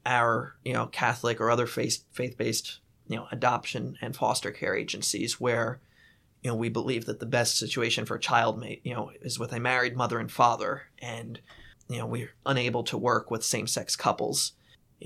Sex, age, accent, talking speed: male, 20-39, American, 200 wpm